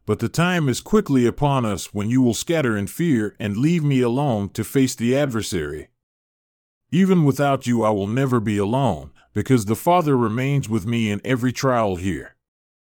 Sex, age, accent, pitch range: male, 40-59, American, 110-140 Hz